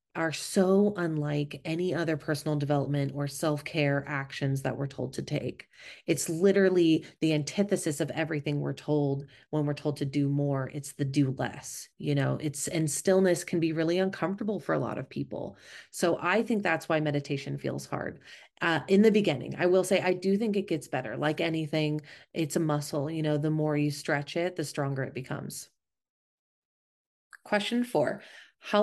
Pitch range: 145-170 Hz